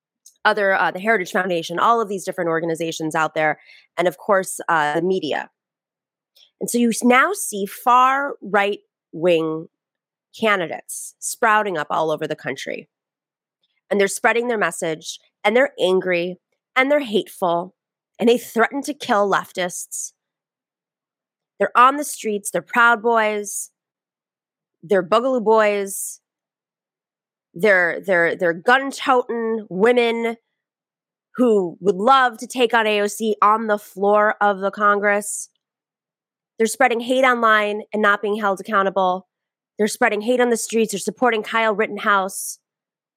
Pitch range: 185-230 Hz